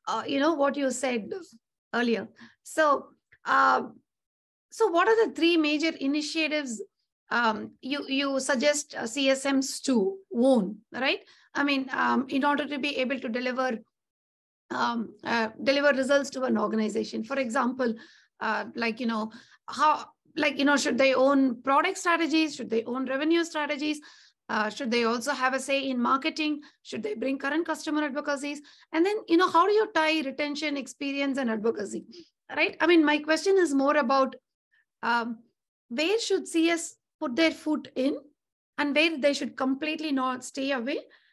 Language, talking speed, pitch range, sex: English, 165 wpm, 255-310 Hz, female